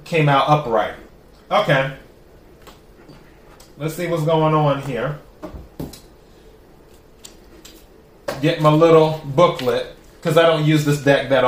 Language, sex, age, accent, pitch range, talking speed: English, male, 30-49, American, 140-175 Hz, 110 wpm